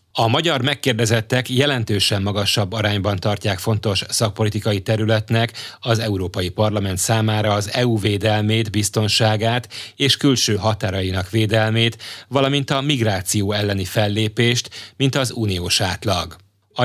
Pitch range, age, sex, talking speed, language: 100-125 Hz, 30-49, male, 115 wpm, Hungarian